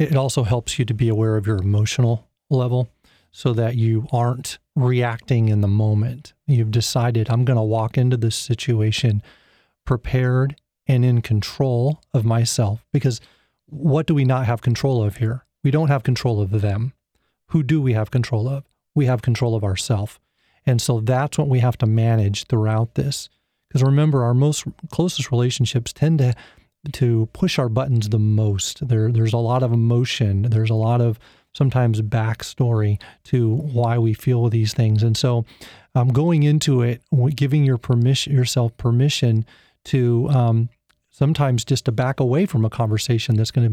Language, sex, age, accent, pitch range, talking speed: English, male, 30-49, American, 115-135 Hz, 175 wpm